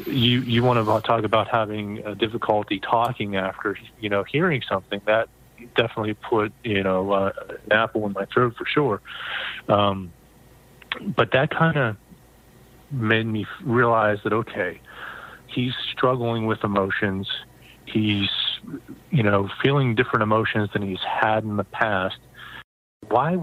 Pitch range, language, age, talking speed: 100-125 Hz, English, 40-59, 140 wpm